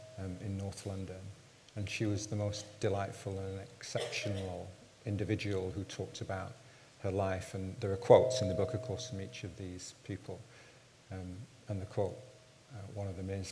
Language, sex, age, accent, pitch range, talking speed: English, male, 40-59, British, 95-115 Hz, 180 wpm